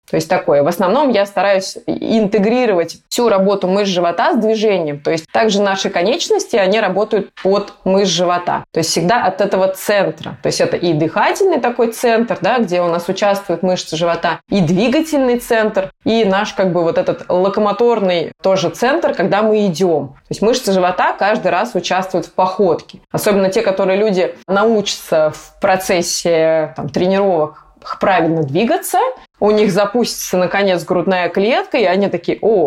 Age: 20-39